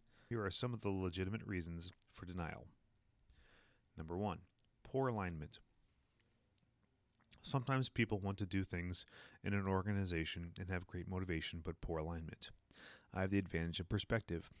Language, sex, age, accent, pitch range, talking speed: English, male, 30-49, American, 85-110 Hz, 145 wpm